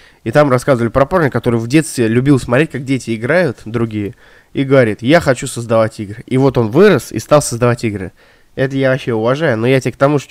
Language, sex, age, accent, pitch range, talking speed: Russian, male, 20-39, native, 115-150 Hz, 220 wpm